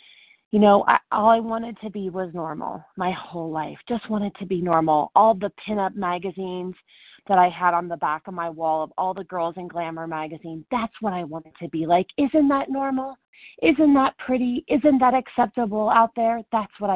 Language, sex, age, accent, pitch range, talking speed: English, female, 30-49, American, 175-235 Hz, 200 wpm